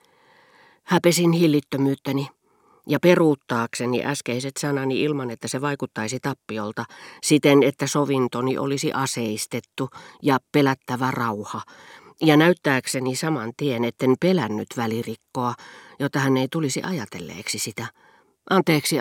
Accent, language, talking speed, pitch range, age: native, Finnish, 105 wpm, 120-160 Hz, 40-59